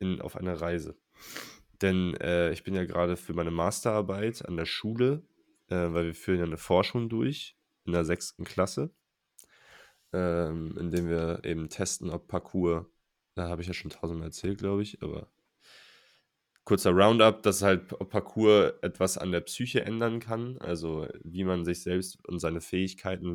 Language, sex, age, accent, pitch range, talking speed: German, male, 20-39, German, 85-110 Hz, 165 wpm